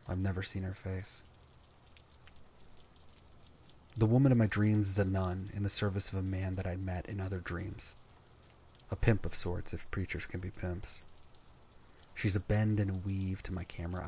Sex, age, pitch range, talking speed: male, 30-49, 90-100 Hz, 185 wpm